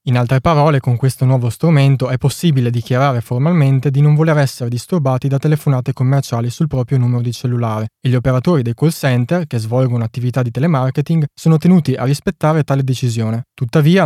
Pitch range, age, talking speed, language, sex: 125-145 Hz, 20-39, 180 wpm, Italian, male